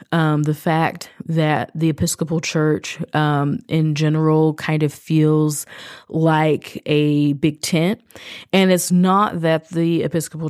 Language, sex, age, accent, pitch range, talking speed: English, female, 20-39, American, 145-160 Hz, 130 wpm